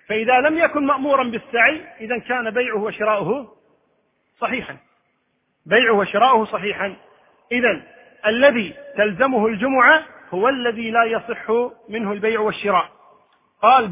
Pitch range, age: 215-265 Hz, 40-59